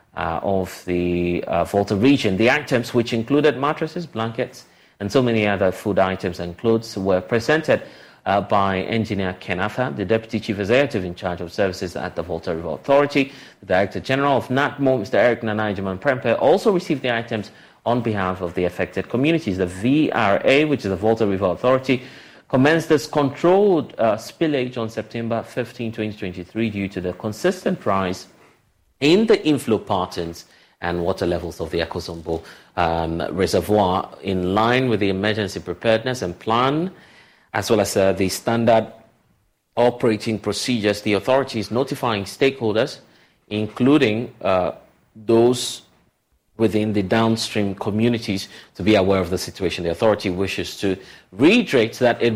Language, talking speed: English, 150 wpm